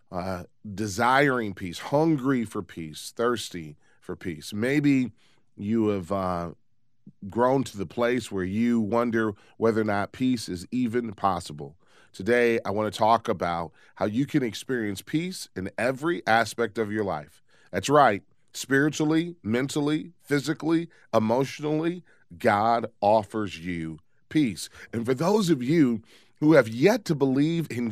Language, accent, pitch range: English, American, 100-135 Hz